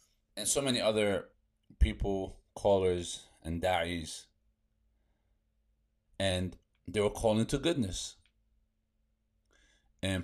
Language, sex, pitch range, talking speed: English, male, 85-105 Hz, 90 wpm